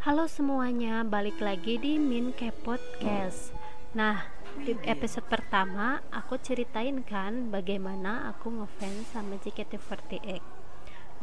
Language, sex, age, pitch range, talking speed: Indonesian, female, 20-39, 210-255 Hz, 105 wpm